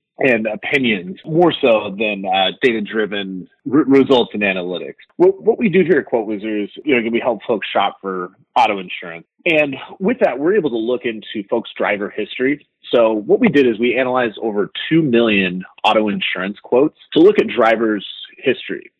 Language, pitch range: English, 95-135 Hz